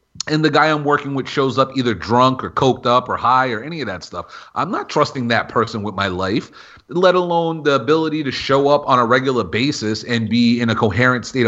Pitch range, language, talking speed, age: 125-170 Hz, English, 235 wpm, 30-49